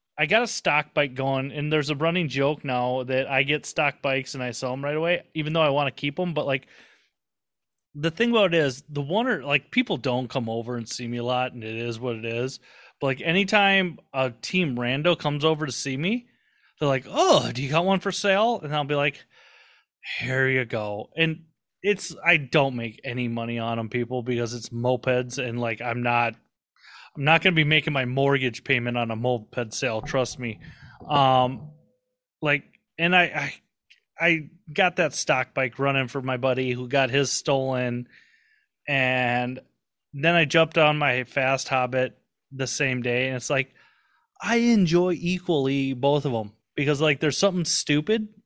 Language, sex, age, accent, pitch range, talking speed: English, male, 30-49, American, 125-165 Hz, 195 wpm